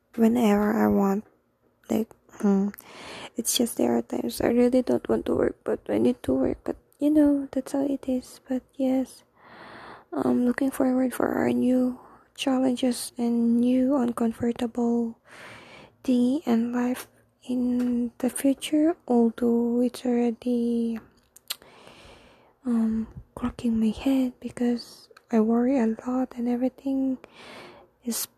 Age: 20-39